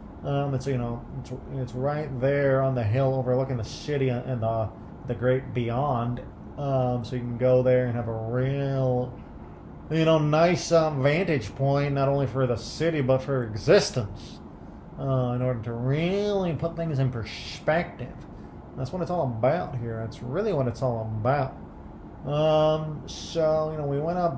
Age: 30-49